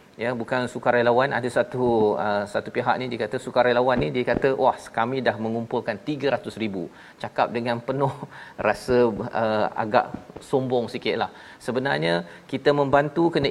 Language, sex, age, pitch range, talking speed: Malayalam, male, 40-59, 120-145 Hz, 140 wpm